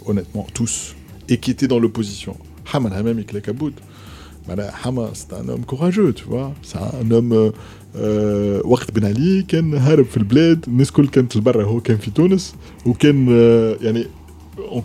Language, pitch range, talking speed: Arabic, 105-140 Hz, 75 wpm